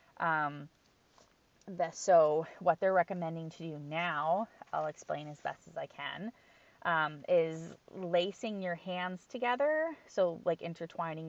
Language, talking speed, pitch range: English, 135 wpm, 155-190 Hz